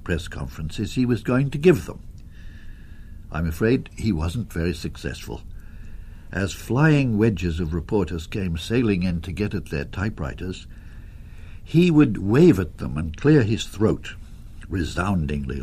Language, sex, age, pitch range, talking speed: English, male, 60-79, 80-105 Hz, 140 wpm